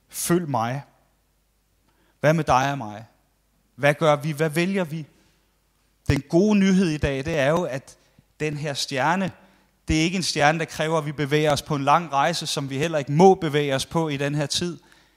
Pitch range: 130-170 Hz